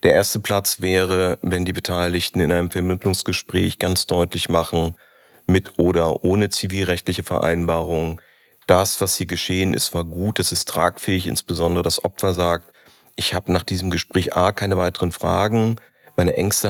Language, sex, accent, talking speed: German, male, German, 155 wpm